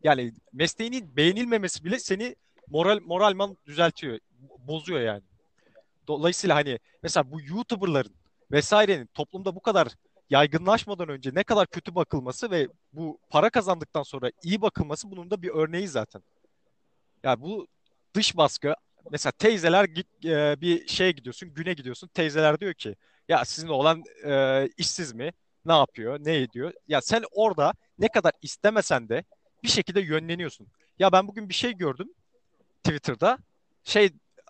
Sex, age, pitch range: male, 40-59, 140-195 Hz